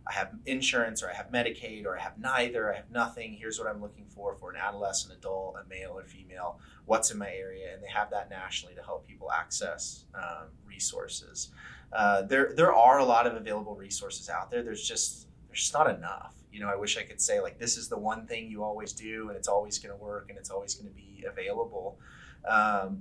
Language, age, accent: English, 30-49, American